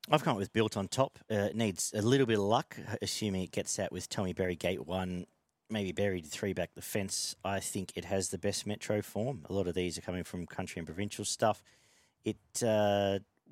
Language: English